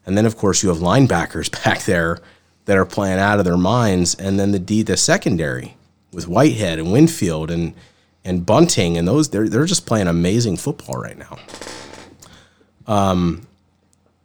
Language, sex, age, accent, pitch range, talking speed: English, male, 30-49, American, 90-105 Hz, 170 wpm